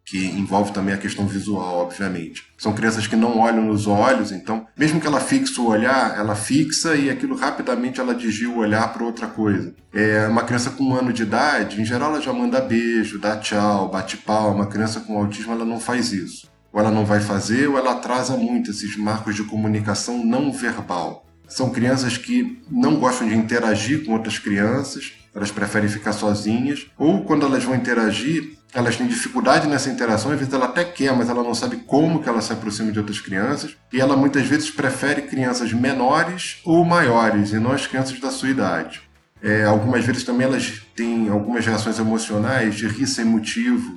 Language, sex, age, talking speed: Portuguese, male, 10-29, 195 wpm